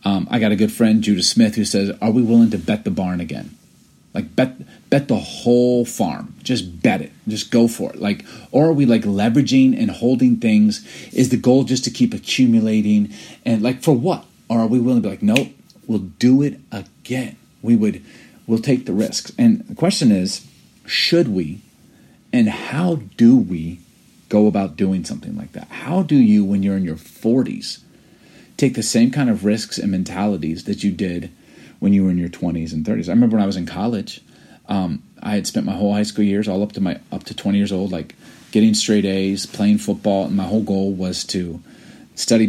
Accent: American